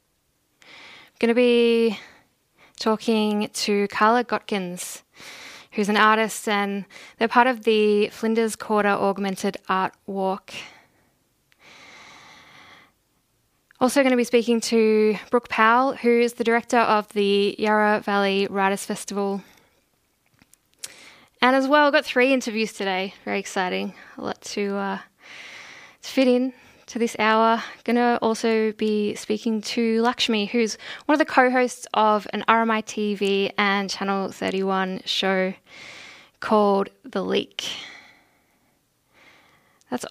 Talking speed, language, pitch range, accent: 125 wpm, English, 205-235 Hz, Australian